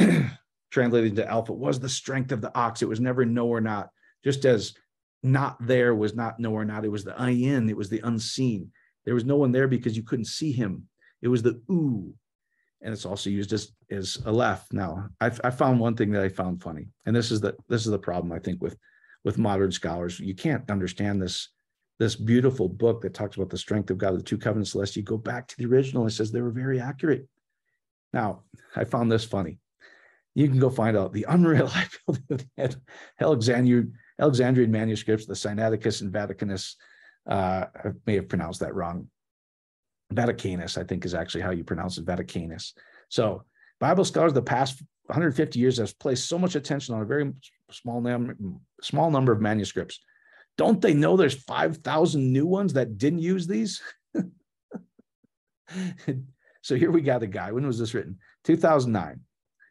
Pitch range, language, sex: 100-130 Hz, English, male